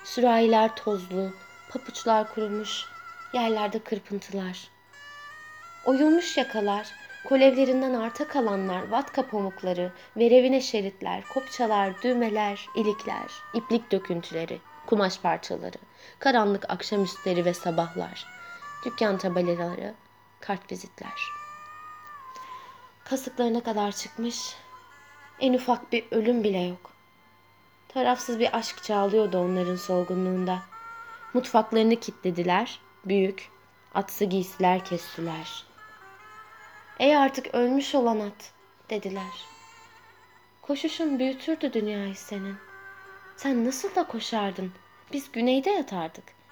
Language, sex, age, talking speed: Turkish, female, 20-39, 90 wpm